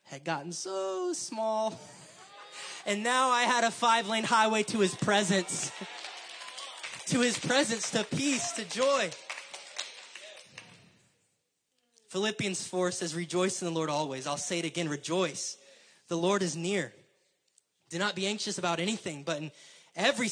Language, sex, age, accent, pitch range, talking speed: English, male, 20-39, American, 145-190 Hz, 140 wpm